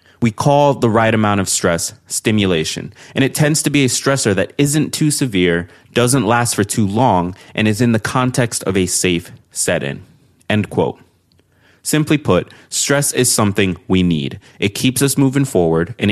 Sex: male